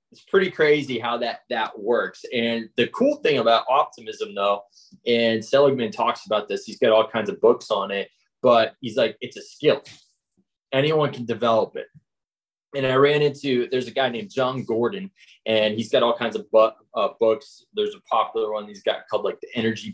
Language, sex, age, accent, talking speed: English, male, 20-39, American, 195 wpm